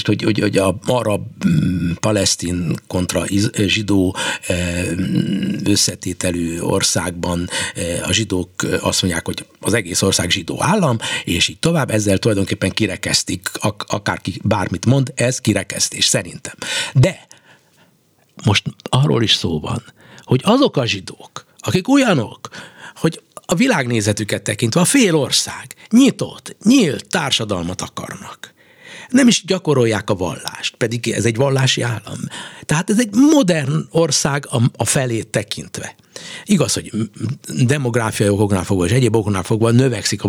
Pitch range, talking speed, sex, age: 105-165 Hz, 125 wpm, male, 60-79